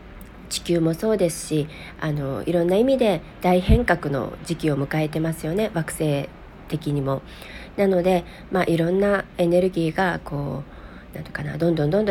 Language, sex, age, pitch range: Japanese, female, 40-59, 155-205 Hz